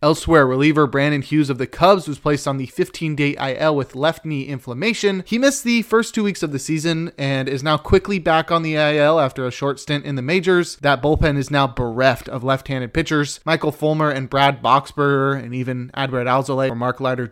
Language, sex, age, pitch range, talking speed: English, male, 20-39, 130-155 Hz, 210 wpm